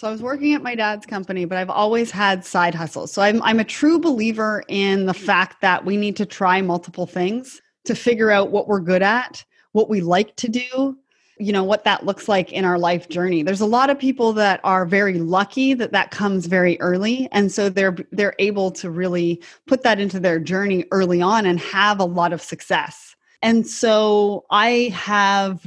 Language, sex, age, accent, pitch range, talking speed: English, female, 30-49, American, 180-225 Hz, 210 wpm